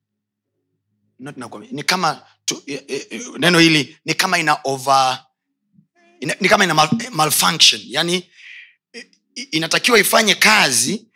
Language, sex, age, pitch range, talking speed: Swahili, male, 30-49, 140-205 Hz, 100 wpm